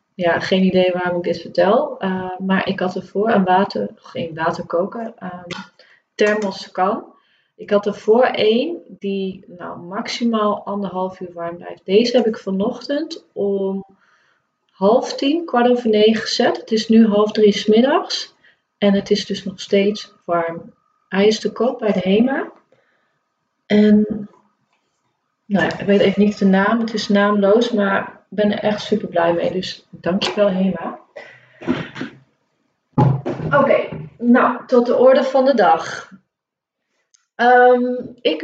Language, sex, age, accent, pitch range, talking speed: Dutch, female, 30-49, Dutch, 190-245 Hz, 150 wpm